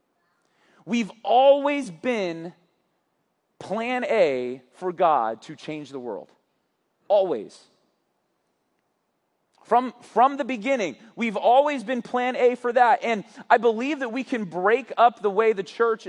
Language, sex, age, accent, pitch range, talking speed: English, male, 30-49, American, 195-255 Hz, 130 wpm